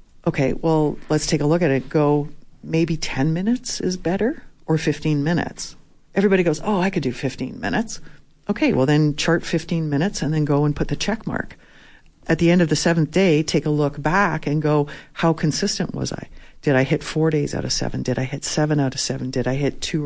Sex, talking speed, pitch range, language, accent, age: female, 225 wpm, 145-170 Hz, English, American, 50-69